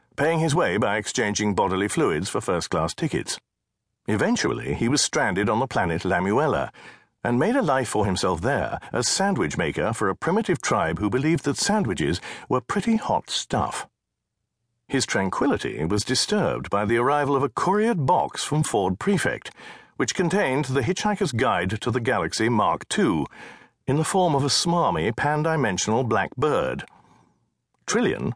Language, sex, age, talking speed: English, male, 50-69, 155 wpm